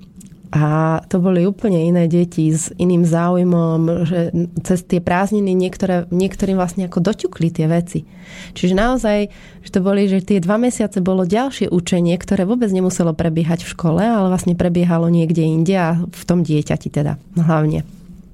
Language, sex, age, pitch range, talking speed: Slovak, female, 30-49, 170-195 Hz, 160 wpm